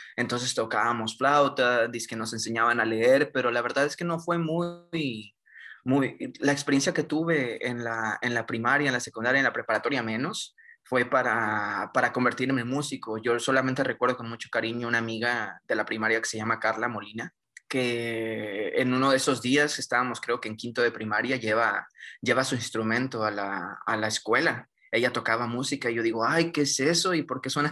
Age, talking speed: 20-39, 195 wpm